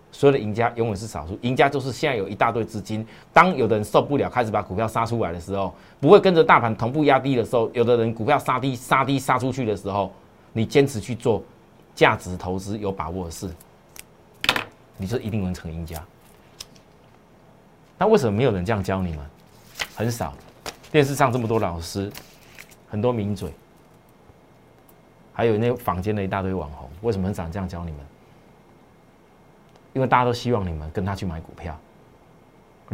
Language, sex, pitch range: Chinese, male, 95-120 Hz